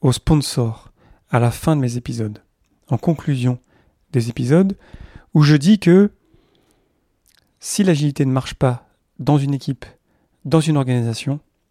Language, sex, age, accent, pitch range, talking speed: French, male, 40-59, French, 115-145 Hz, 140 wpm